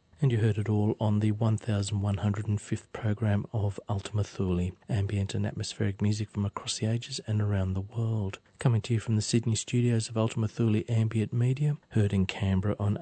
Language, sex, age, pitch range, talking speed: English, male, 40-59, 95-110 Hz, 185 wpm